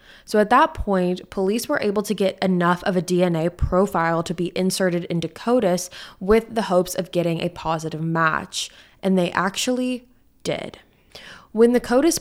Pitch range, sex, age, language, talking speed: 175-210 Hz, female, 20-39, English, 165 wpm